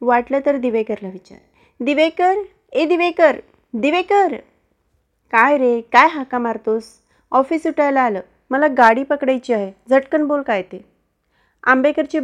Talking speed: 125 wpm